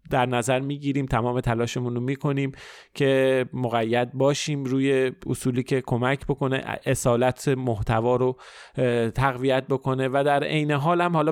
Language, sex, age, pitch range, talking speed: Persian, male, 30-49, 120-145 Hz, 135 wpm